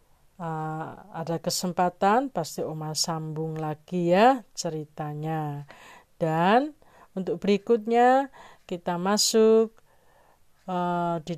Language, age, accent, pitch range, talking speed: Indonesian, 40-59, native, 160-220 Hz, 85 wpm